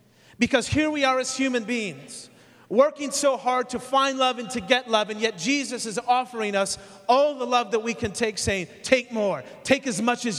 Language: English